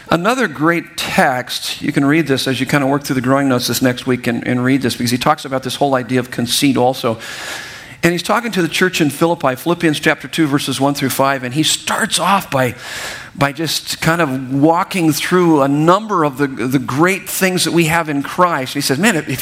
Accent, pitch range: American, 145-200 Hz